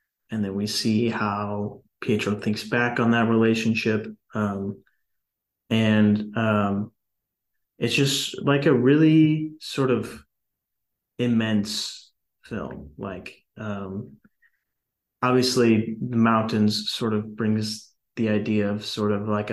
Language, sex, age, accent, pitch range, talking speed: English, male, 20-39, American, 105-115 Hz, 115 wpm